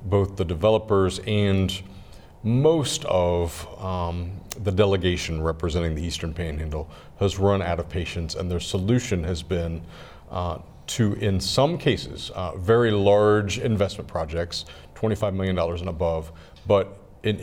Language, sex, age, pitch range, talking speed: English, male, 40-59, 85-105 Hz, 140 wpm